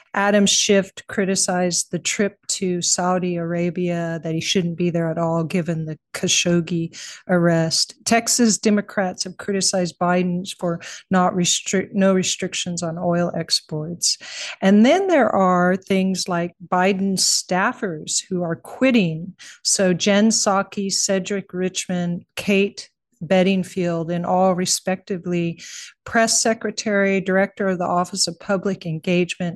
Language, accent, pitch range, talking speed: English, American, 175-195 Hz, 125 wpm